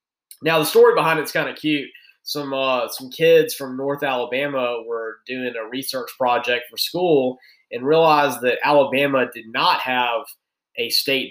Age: 20-39